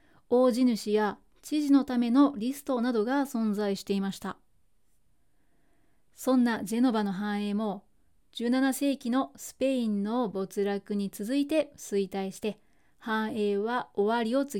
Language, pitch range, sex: Japanese, 210-270 Hz, female